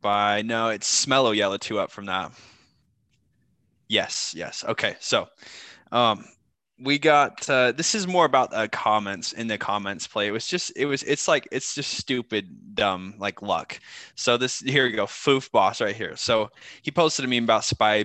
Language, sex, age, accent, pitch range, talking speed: English, male, 20-39, American, 100-125 Hz, 190 wpm